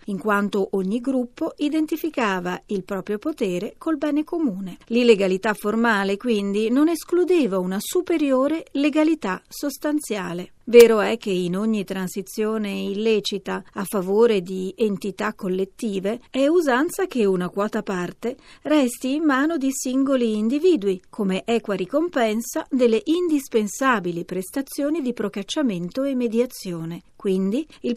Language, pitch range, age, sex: Italian, 195-285 Hz, 40-59, female